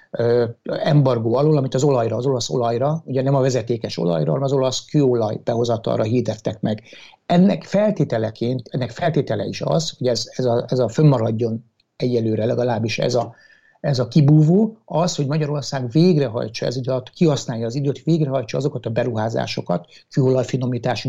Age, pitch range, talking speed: 60-79, 120-155 Hz, 150 wpm